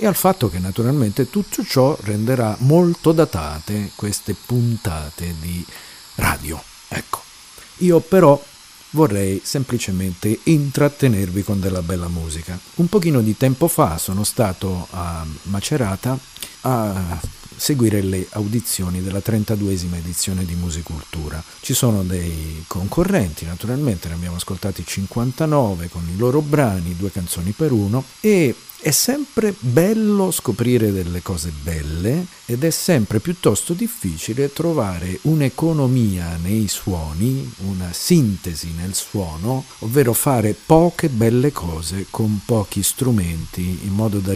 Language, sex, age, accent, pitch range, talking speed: Italian, male, 50-69, native, 90-135 Hz, 125 wpm